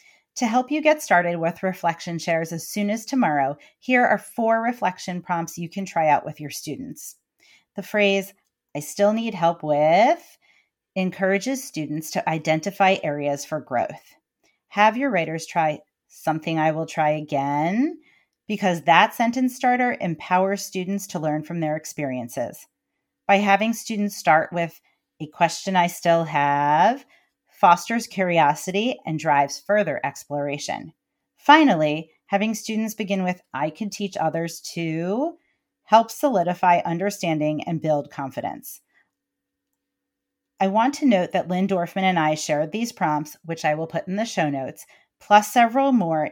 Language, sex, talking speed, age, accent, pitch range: English, female, 145 wpm, 40-59, American, 155-210 Hz